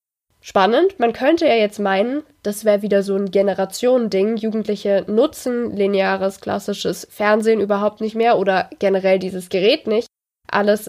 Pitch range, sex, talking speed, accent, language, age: 200-260 Hz, female, 145 wpm, German, German, 20-39